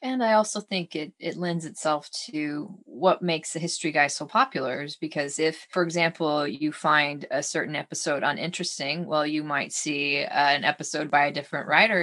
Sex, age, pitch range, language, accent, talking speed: female, 20-39, 160-200 Hz, English, American, 190 wpm